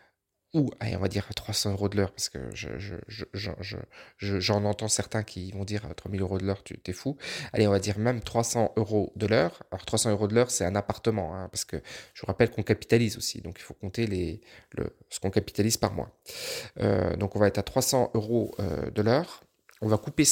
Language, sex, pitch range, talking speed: French, male, 105-125 Hz, 245 wpm